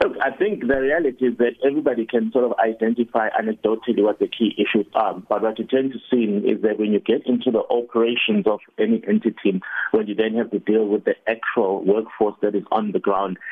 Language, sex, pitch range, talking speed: English, male, 100-115 Hz, 215 wpm